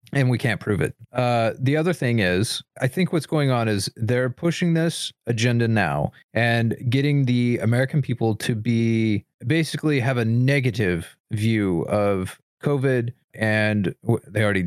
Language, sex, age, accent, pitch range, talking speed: English, male, 30-49, American, 110-145 Hz, 155 wpm